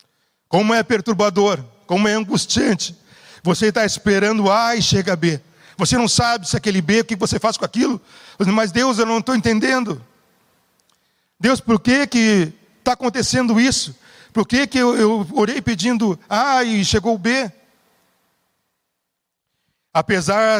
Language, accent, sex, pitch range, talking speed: Portuguese, Brazilian, male, 180-225 Hz, 155 wpm